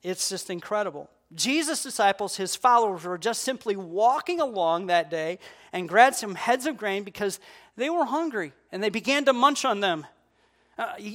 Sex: male